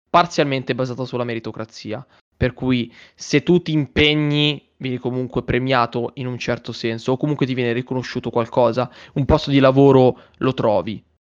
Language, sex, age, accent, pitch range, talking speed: Italian, male, 20-39, native, 115-140 Hz, 155 wpm